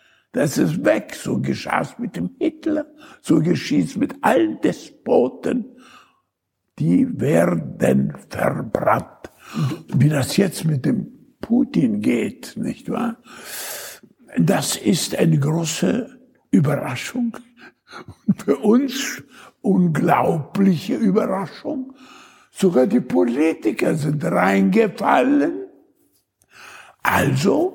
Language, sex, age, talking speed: German, male, 60-79, 85 wpm